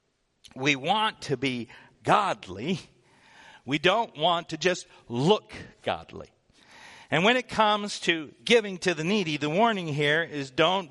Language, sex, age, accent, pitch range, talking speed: English, male, 50-69, American, 130-190 Hz, 145 wpm